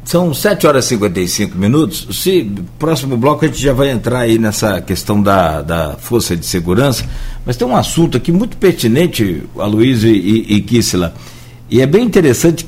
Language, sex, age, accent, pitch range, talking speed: Portuguese, male, 60-79, Brazilian, 115-160 Hz, 180 wpm